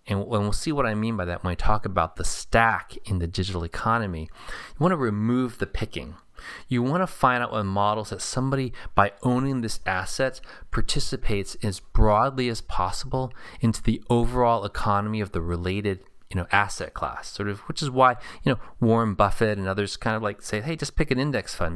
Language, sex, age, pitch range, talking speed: English, male, 20-39, 95-125 Hz, 200 wpm